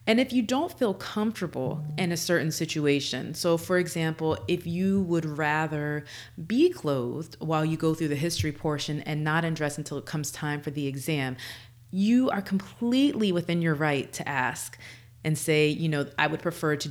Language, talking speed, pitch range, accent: English, 185 wpm, 145-210 Hz, American